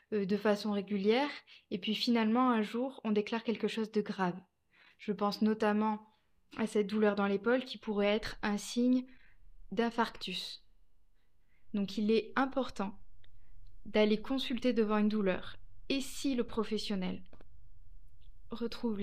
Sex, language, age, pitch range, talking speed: female, French, 20-39, 190-225 Hz, 130 wpm